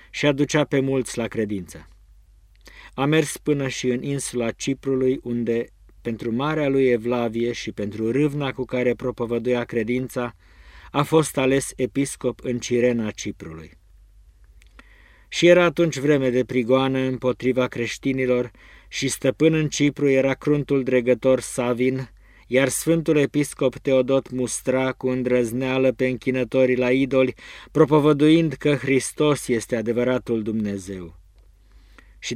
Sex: male